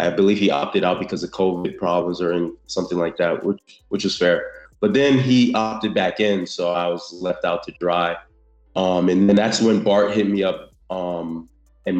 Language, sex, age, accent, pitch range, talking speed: Spanish, male, 20-39, American, 90-110 Hz, 205 wpm